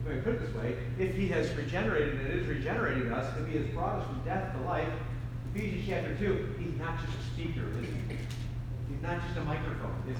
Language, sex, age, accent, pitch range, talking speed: English, male, 50-69, American, 120-170 Hz, 230 wpm